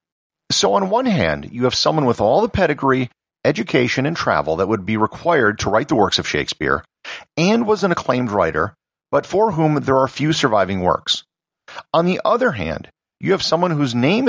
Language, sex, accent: English, male, American